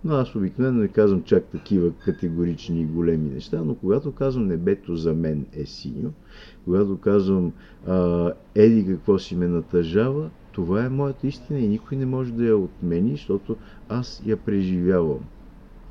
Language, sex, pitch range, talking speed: Bulgarian, male, 85-115 Hz, 155 wpm